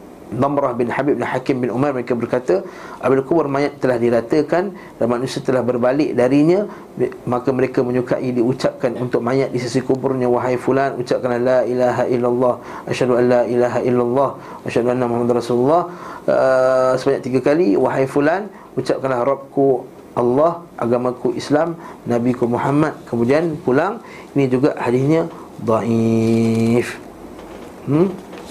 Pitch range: 120-145 Hz